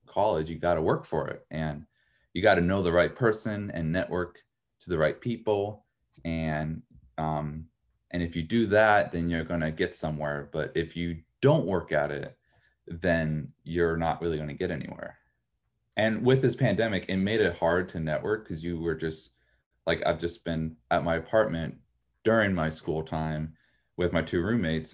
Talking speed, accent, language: 190 wpm, American, English